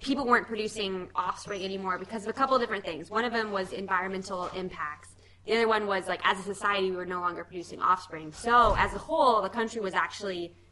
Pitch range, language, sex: 175-215 Hz, English, female